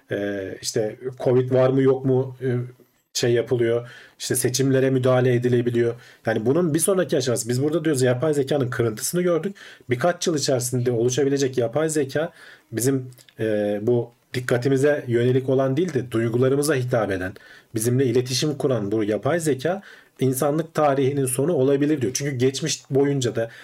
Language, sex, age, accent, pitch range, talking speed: Turkish, male, 40-59, native, 115-140 Hz, 140 wpm